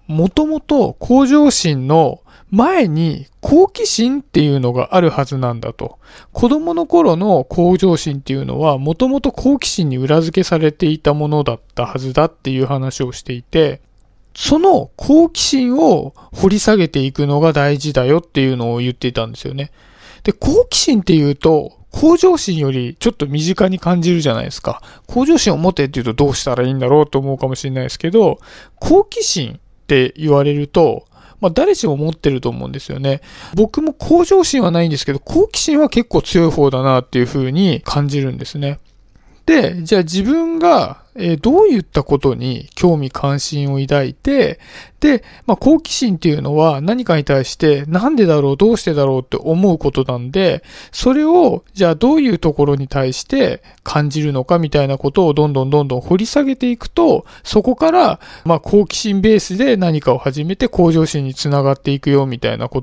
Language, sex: Japanese, male